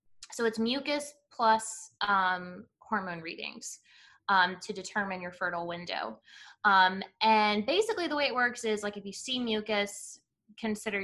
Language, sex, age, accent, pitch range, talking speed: English, female, 20-39, American, 185-220 Hz, 145 wpm